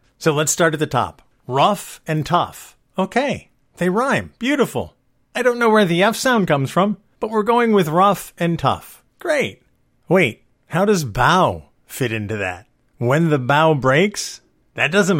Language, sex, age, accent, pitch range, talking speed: English, male, 50-69, American, 140-190 Hz, 170 wpm